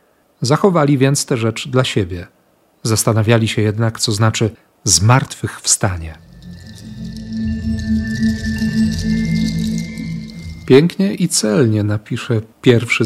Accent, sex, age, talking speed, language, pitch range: native, male, 40-59, 80 wpm, Polish, 110-135 Hz